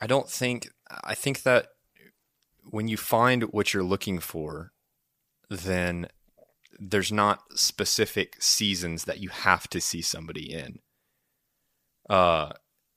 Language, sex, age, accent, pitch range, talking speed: English, male, 20-39, American, 85-100 Hz, 120 wpm